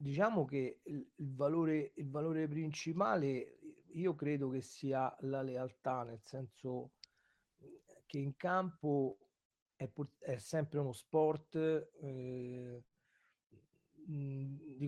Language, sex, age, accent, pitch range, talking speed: Italian, male, 40-59, native, 135-155 Hz, 95 wpm